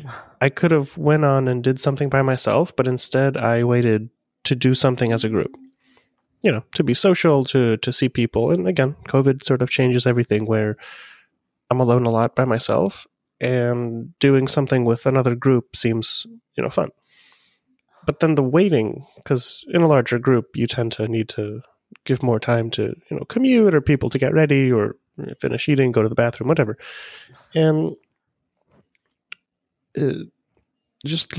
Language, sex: English, male